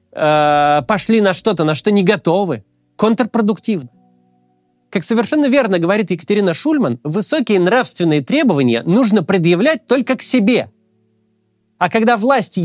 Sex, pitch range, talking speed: male, 145-235 Hz, 120 wpm